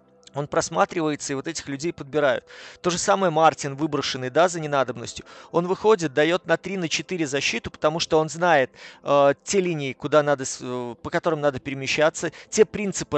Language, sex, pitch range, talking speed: Russian, male, 140-165 Hz, 170 wpm